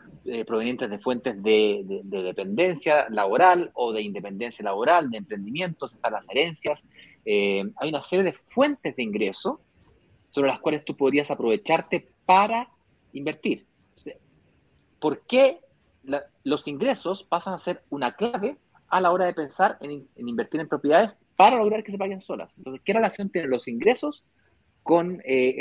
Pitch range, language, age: 135-195 Hz, Spanish, 30-49